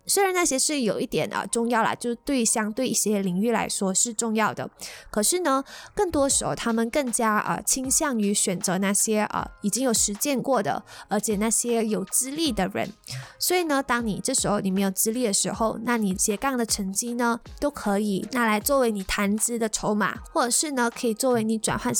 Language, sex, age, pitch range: Chinese, female, 20-39, 210-260 Hz